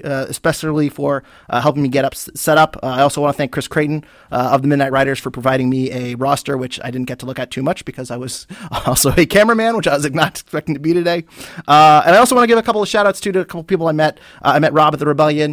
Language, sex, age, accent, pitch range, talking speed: English, male, 30-49, American, 130-160 Hz, 300 wpm